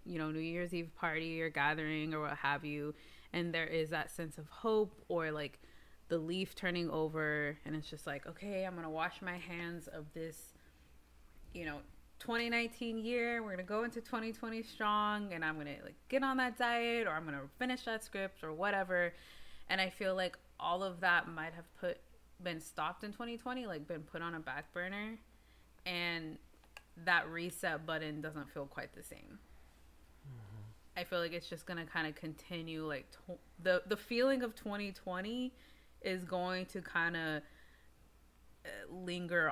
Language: English